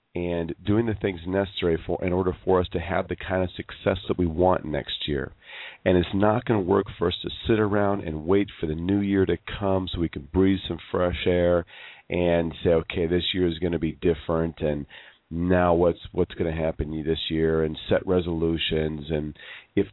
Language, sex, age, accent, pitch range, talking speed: English, male, 40-59, American, 85-105 Hz, 215 wpm